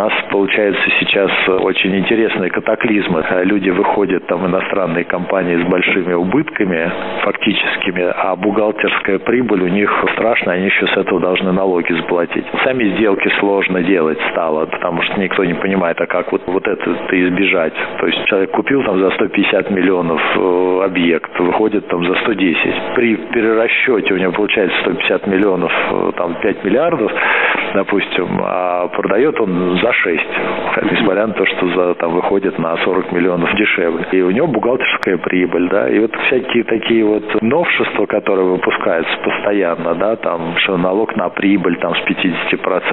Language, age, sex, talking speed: Russian, 50-69, male, 150 wpm